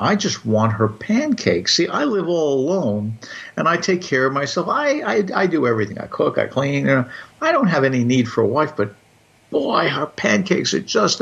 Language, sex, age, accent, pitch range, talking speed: English, male, 60-79, American, 110-135 Hz, 220 wpm